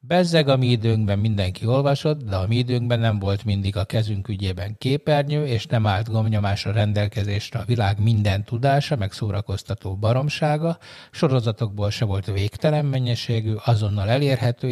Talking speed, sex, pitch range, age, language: 145 wpm, male, 100-125 Hz, 50-69, Hungarian